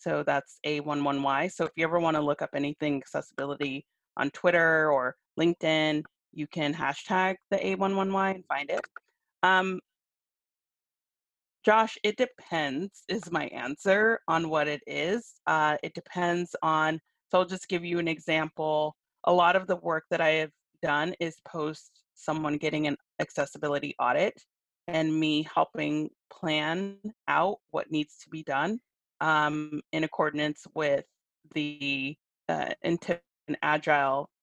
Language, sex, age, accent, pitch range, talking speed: English, female, 30-49, American, 150-175 Hz, 140 wpm